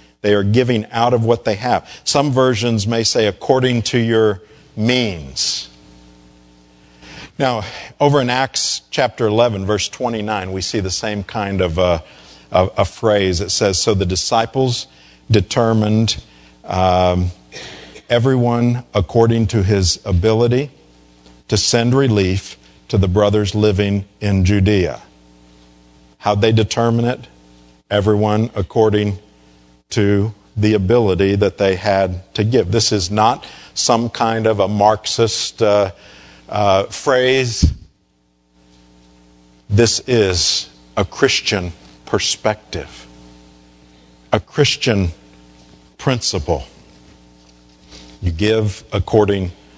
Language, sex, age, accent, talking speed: English, male, 50-69, American, 110 wpm